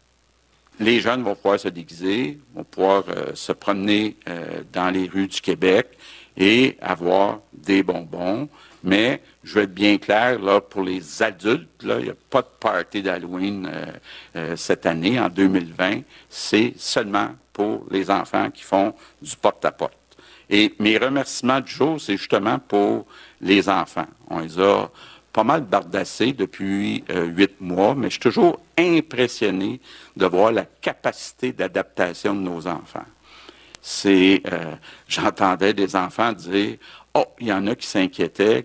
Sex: male